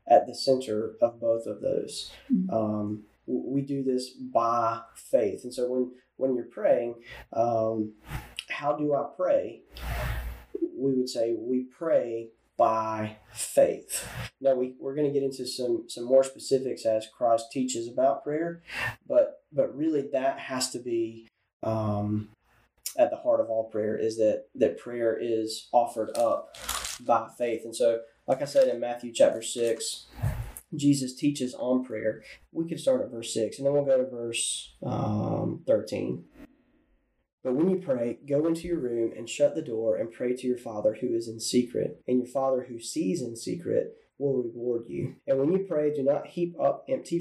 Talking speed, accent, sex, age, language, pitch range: 175 wpm, American, male, 20-39, English, 115-145 Hz